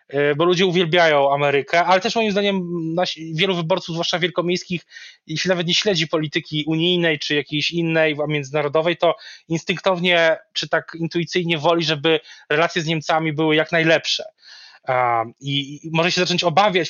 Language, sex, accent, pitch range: Polish, male, native, 150-185 Hz